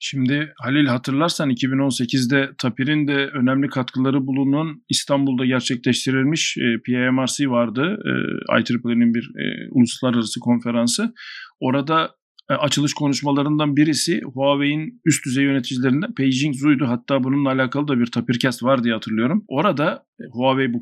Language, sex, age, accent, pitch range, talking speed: Turkish, male, 50-69, native, 125-155 Hz, 110 wpm